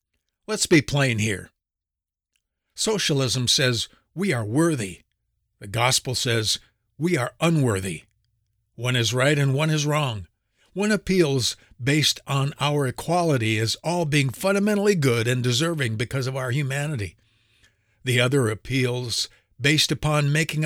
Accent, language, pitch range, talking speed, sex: American, English, 110-150 Hz, 130 wpm, male